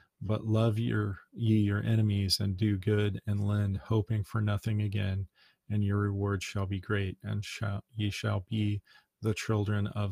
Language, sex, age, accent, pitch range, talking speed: English, male, 30-49, American, 100-110 Hz, 160 wpm